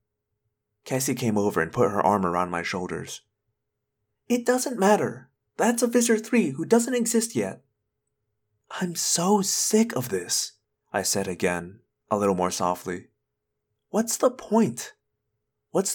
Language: English